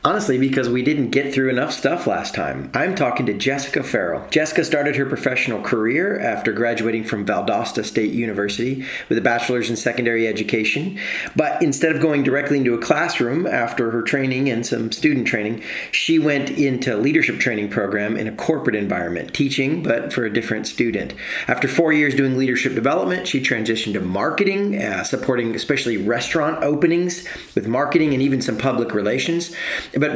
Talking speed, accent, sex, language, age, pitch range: 170 wpm, American, male, English, 40-59, 125-160 Hz